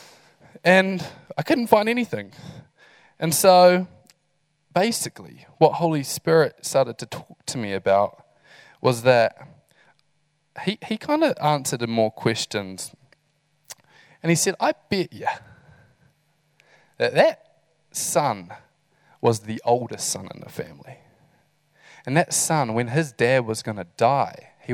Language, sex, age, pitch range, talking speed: English, male, 20-39, 120-160 Hz, 130 wpm